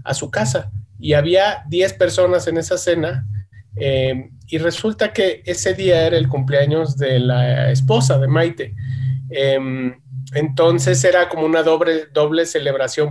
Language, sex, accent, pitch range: Spanish, male, Mexican, 130-155 Hz